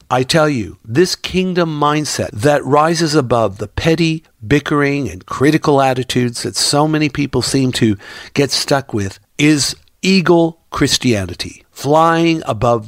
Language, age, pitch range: English, 60-79, 115-155 Hz